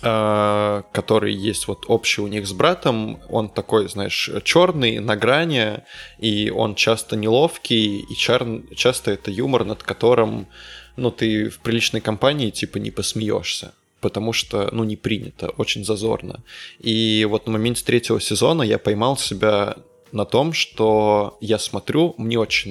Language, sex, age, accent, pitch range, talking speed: Russian, male, 20-39, native, 105-115 Hz, 150 wpm